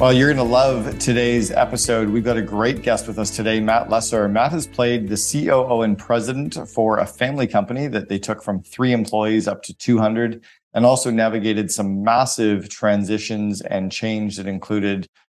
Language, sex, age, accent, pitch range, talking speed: English, male, 40-59, American, 105-115 Hz, 185 wpm